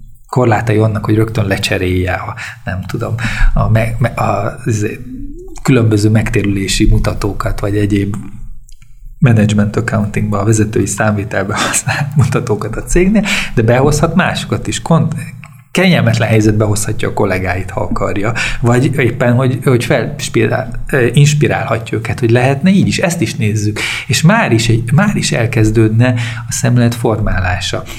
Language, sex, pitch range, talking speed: Hungarian, male, 110-140 Hz, 125 wpm